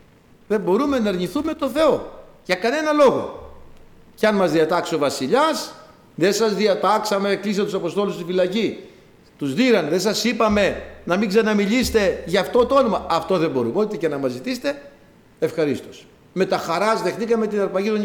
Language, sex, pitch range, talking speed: Greek, male, 160-240 Hz, 170 wpm